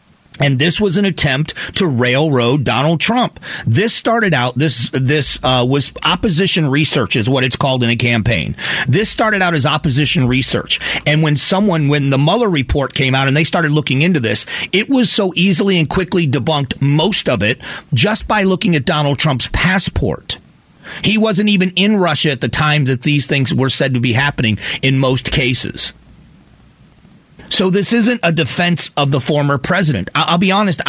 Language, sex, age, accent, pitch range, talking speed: English, male, 40-59, American, 135-185 Hz, 185 wpm